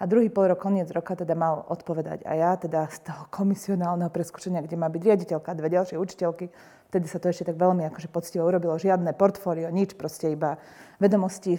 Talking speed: 200 wpm